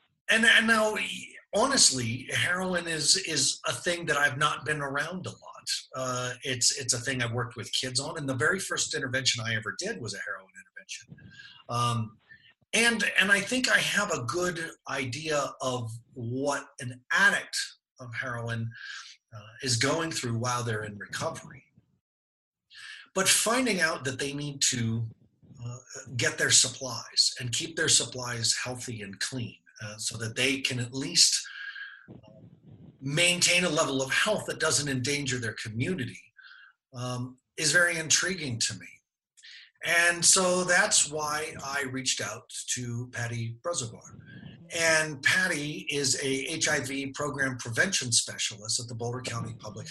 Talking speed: 150 wpm